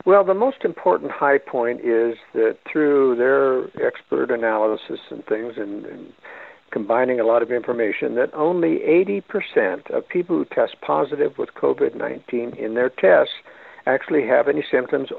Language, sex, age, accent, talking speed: English, male, 60-79, American, 150 wpm